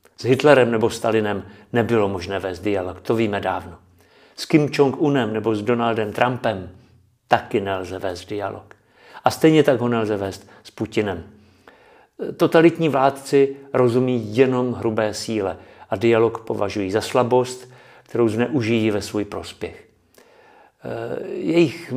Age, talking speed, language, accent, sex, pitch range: 50-69, 130 wpm, Czech, native, male, 105-135 Hz